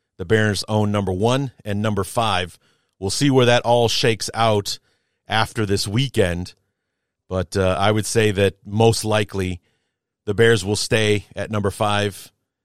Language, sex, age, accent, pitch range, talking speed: English, male, 40-59, American, 90-110 Hz, 155 wpm